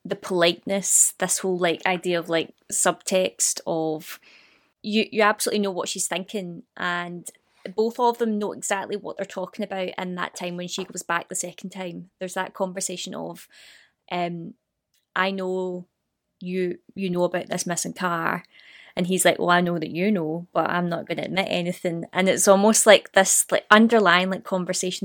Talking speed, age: 180 wpm, 20-39